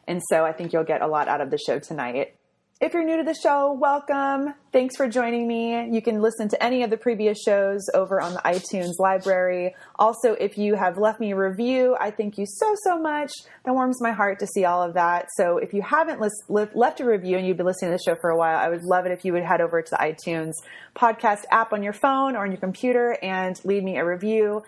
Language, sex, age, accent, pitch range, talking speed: English, female, 30-49, American, 175-235 Hz, 255 wpm